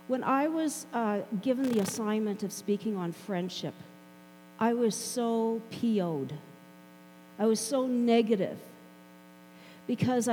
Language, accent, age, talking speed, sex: English, American, 50-69, 115 wpm, female